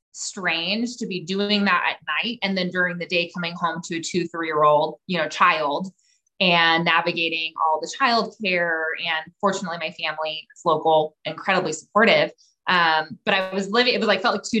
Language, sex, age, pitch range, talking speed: English, female, 20-39, 165-205 Hz, 195 wpm